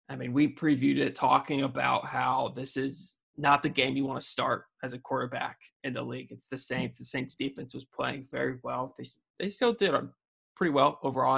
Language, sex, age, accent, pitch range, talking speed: English, male, 20-39, American, 130-155 Hz, 210 wpm